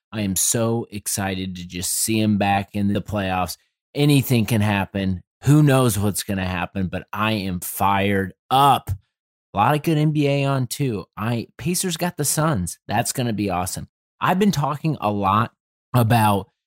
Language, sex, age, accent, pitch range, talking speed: English, male, 30-49, American, 100-125 Hz, 175 wpm